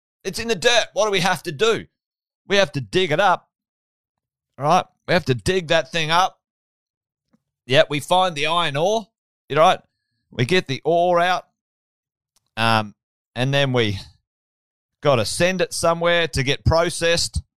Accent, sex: Australian, male